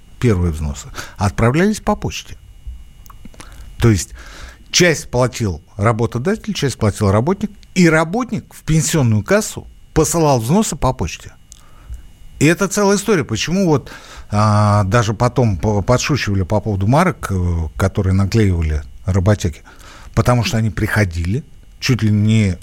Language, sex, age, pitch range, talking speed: Russian, male, 60-79, 95-140 Hz, 120 wpm